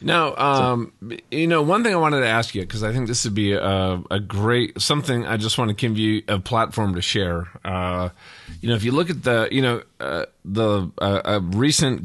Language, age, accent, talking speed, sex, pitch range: English, 40-59, American, 230 wpm, male, 95-120 Hz